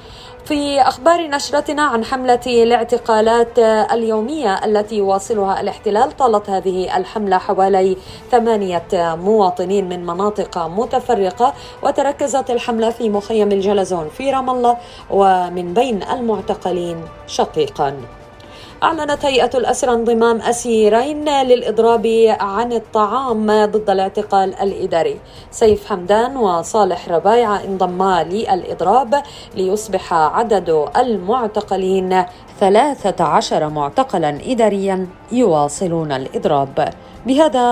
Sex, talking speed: female, 90 wpm